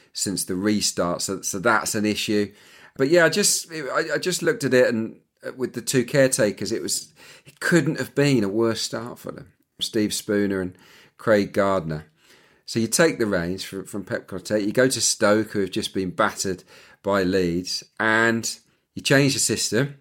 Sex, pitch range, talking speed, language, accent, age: male, 105-120 Hz, 190 wpm, English, British, 40-59